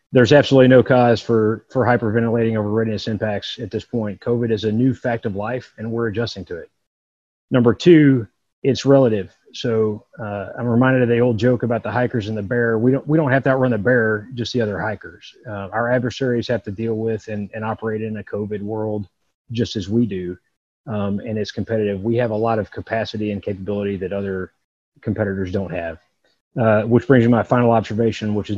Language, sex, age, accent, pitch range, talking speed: English, male, 30-49, American, 105-125 Hz, 210 wpm